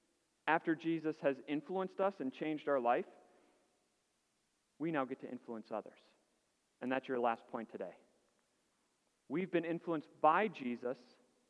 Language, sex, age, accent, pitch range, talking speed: English, male, 40-59, American, 130-175 Hz, 135 wpm